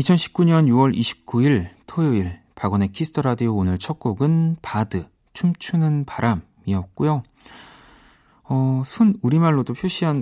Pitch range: 100-145 Hz